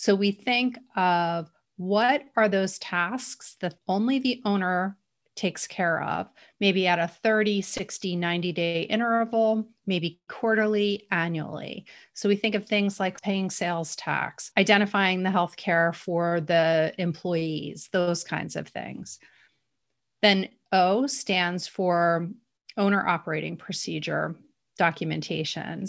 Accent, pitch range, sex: American, 170-210 Hz, female